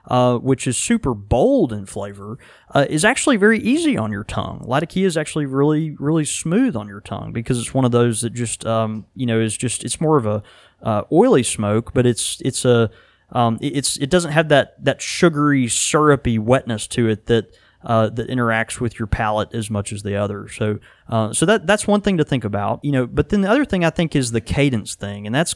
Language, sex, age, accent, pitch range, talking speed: English, male, 20-39, American, 110-140 Hz, 225 wpm